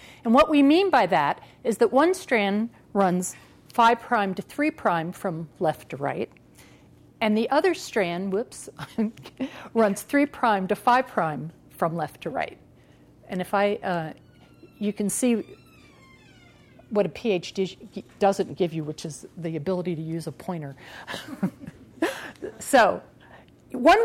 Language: English